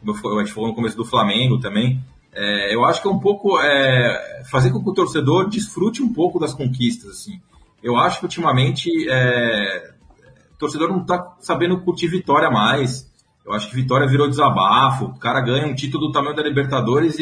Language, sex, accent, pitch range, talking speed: Portuguese, male, Brazilian, 120-165 Hz, 180 wpm